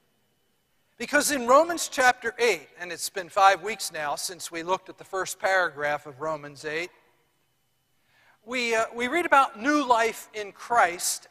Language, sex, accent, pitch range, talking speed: English, male, American, 170-230 Hz, 160 wpm